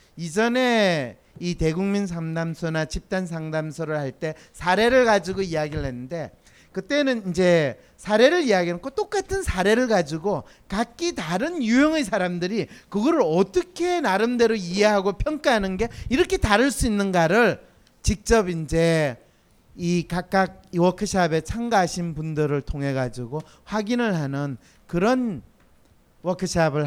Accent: native